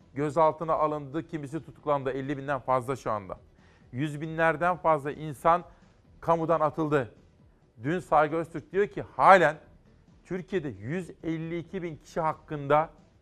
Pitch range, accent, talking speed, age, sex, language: 140-165 Hz, native, 120 wpm, 40-59, male, Turkish